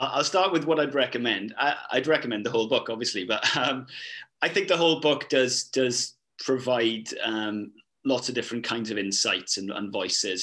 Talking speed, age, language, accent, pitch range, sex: 190 wpm, 30-49, English, British, 110-135 Hz, male